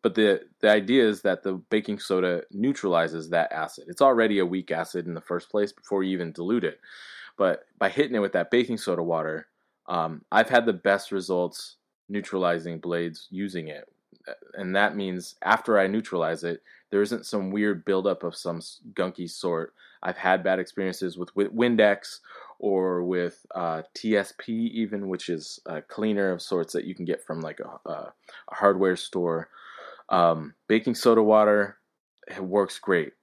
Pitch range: 85-105 Hz